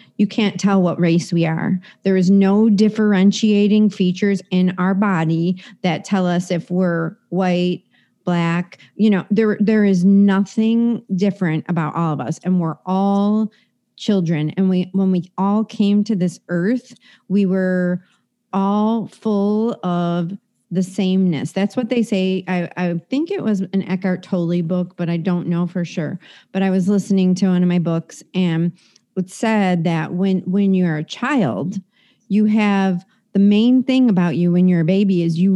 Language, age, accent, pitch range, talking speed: English, 40-59, American, 175-205 Hz, 175 wpm